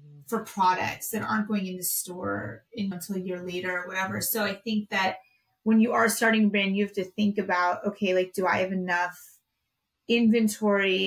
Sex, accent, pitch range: female, American, 180-215 Hz